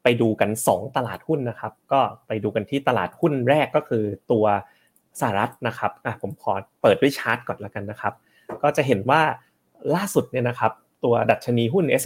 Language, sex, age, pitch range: Thai, male, 30-49, 110-135 Hz